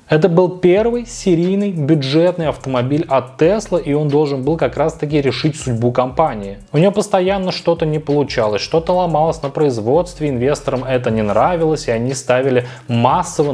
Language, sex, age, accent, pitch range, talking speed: Russian, male, 20-39, native, 125-170 Hz, 155 wpm